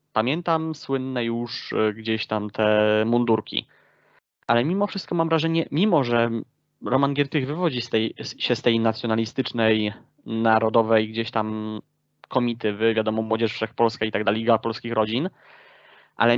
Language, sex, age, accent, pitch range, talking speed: Polish, male, 20-39, native, 115-155 Hz, 140 wpm